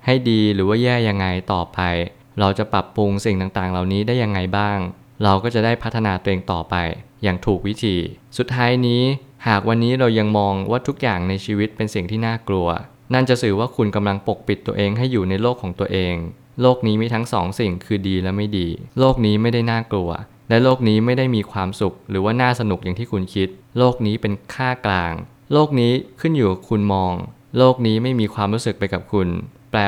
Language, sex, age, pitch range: Thai, male, 20-39, 100-120 Hz